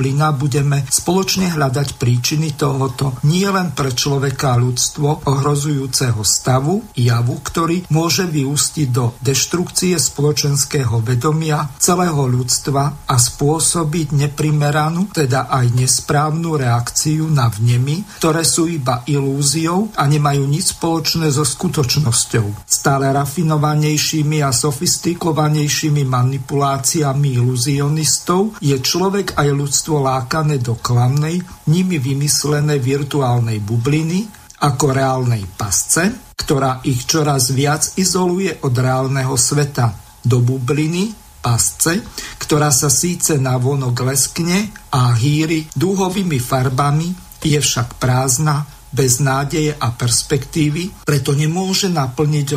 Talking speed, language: 105 wpm, Slovak